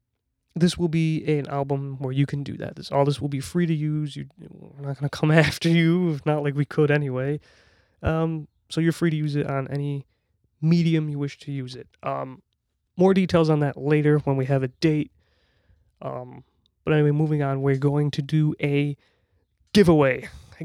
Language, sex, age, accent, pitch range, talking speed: English, male, 20-39, American, 125-160 Hz, 200 wpm